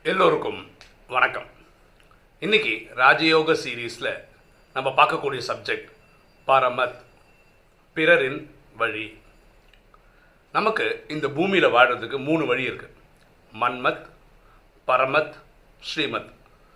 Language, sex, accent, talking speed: Tamil, male, native, 75 wpm